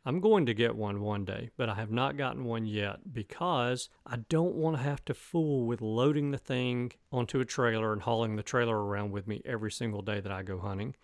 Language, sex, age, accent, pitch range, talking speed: English, male, 40-59, American, 105-130 Hz, 235 wpm